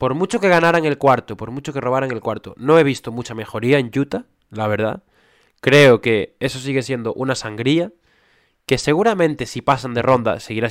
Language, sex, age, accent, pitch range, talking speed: Spanish, male, 20-39, Spanish, 120-155 Hz, 195 wpm